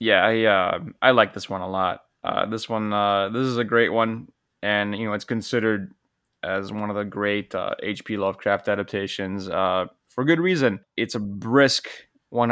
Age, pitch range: 20-39, 100-115 Hz